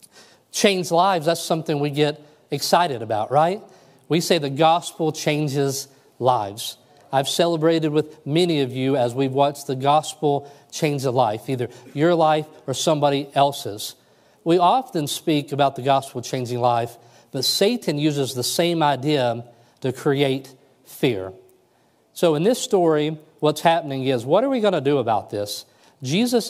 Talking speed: 155 wpm